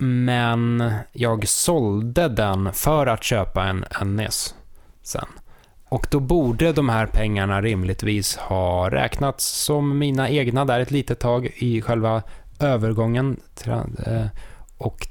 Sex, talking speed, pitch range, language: male, 125 wpm, 100-125 Hz, Swedish